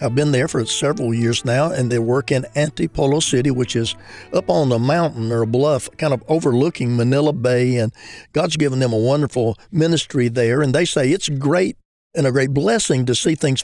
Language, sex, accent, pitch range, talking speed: English, male, American, 120-150 Hz, 205 wpm